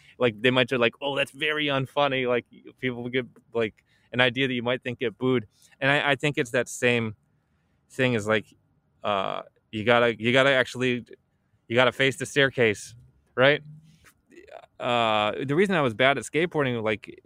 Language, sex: English, male